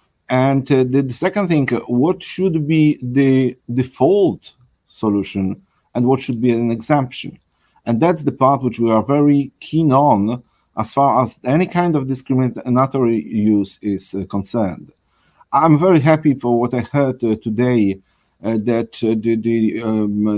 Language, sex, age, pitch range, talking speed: English, male, 50-69, 110-135 Hz, 160 wpm